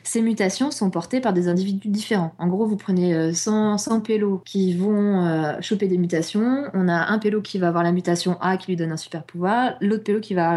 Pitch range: 170-210 Hz